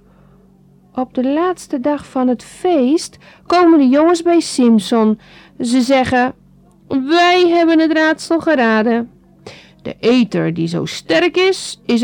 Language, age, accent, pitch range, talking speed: Dutch, 50-69, Dutch, 195-300 Hz, 130 wpm